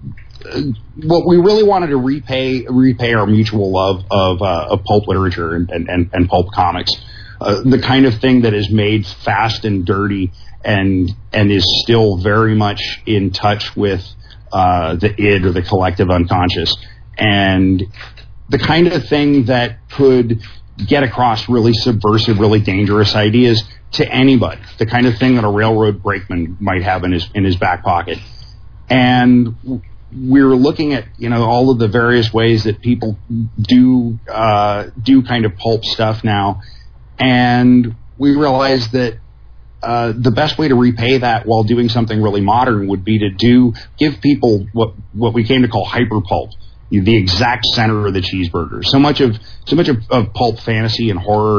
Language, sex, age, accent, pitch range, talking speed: English, male, 40-59, American, 100-125 Hz, 170 wpm